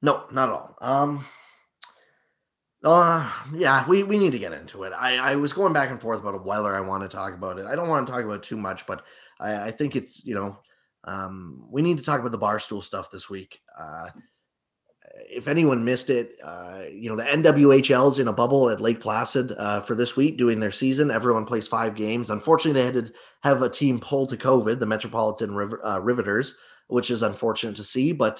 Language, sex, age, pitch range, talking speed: English, male, 20-39, 105-140 Hz, 220 wpm